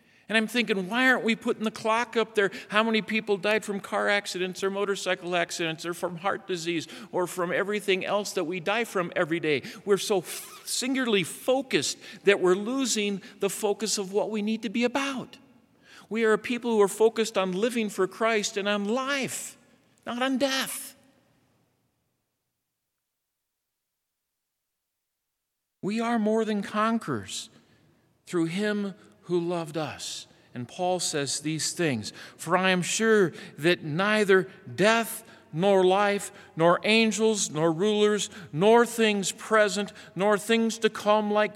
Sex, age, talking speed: male, 50-69, 150 wpm